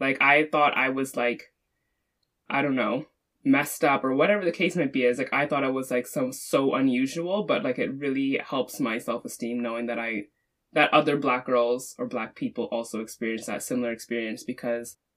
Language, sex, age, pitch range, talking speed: English, female, 20-39, 125-150 Hz, 200 wpm